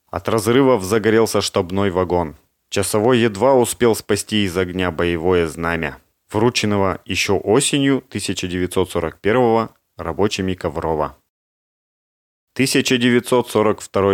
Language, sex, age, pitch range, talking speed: Russian, male, 30-49, 90-120 Hz, 85 wpm